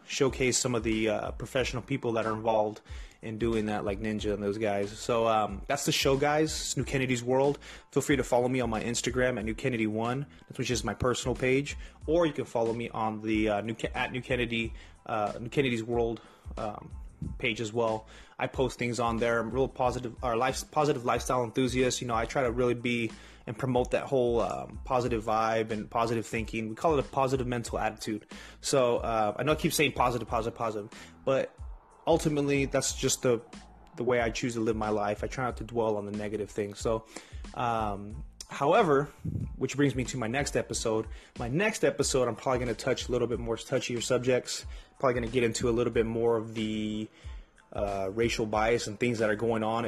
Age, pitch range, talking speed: 20-39, 110-125 Hz, 215 wpm